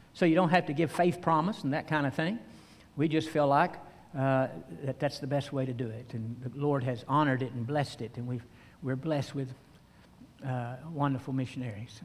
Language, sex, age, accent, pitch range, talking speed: English, male, 60-79, American, 130-205 Hz, 210 wpm